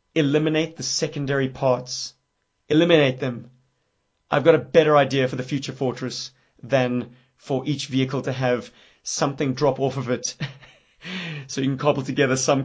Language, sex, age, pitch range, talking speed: English, male, 30-49, 130-155 Hz, 150 wpm